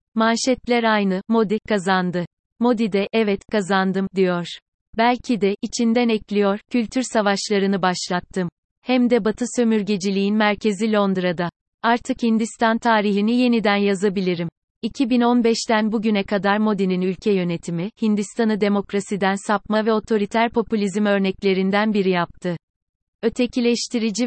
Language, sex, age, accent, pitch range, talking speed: Turkish, female, 30-49, native, 190-220 Hz, 105 wpm